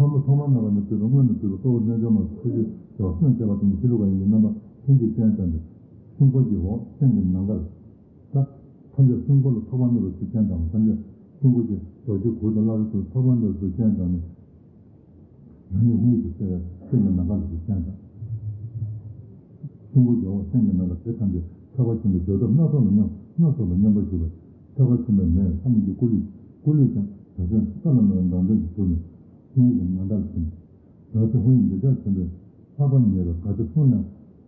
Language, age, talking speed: Italian, 60-79, 105 wpm